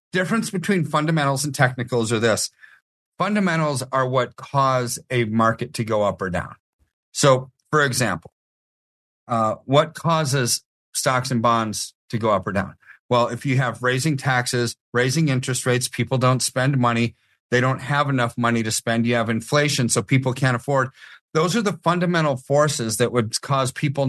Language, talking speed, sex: English, 170 wpm, male